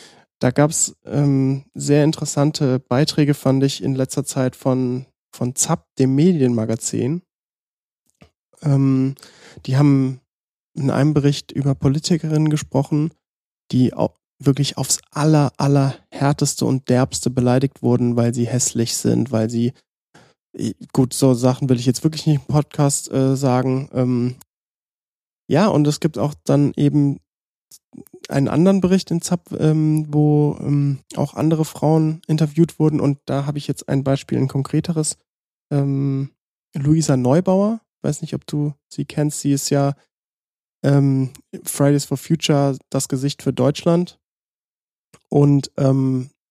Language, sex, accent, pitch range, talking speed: German, male, German, 130-150 Hz, 135 wpm